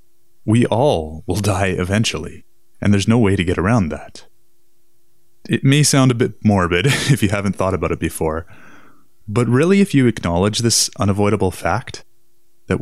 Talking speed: 165 wpm